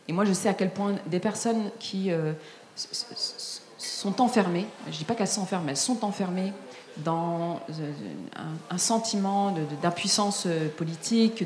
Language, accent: French, French